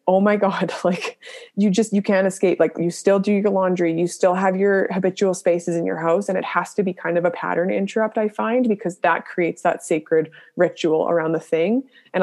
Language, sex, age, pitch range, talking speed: English, female, 20-39, 175-200 Hz, 225 wpm